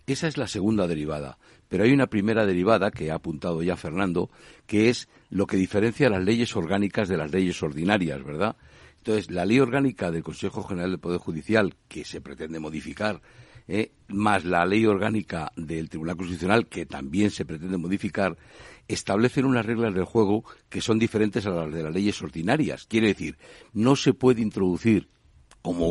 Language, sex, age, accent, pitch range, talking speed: Spanish, male, 60-79, Spanish, 85-110 Hz, 175 wpm